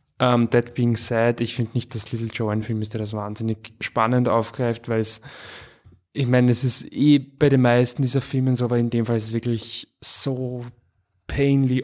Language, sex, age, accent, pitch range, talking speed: German, male, 20-39, German, 115-130 Hz, 200 wpm